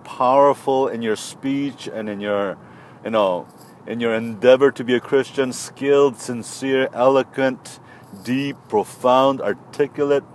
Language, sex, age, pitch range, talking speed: English, male, 40-59, 120-140 Hz, 130 wpm